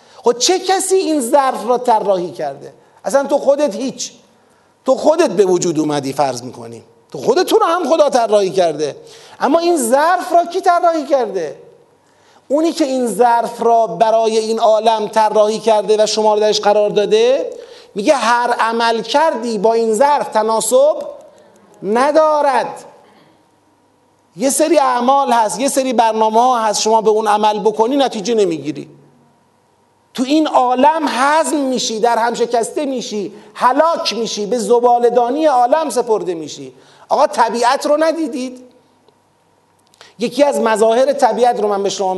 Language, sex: Persian, male